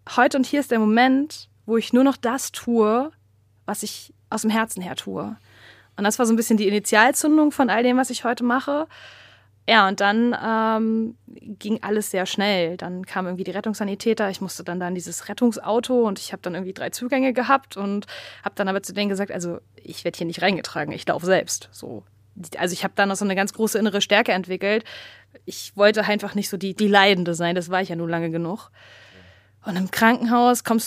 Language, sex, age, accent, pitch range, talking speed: German, female, 20-39, German, 195-250 Hz, 215 wpm